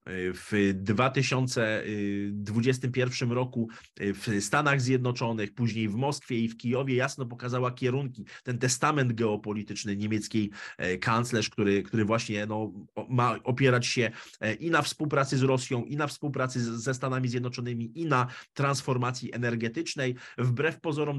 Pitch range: 110-130 Hz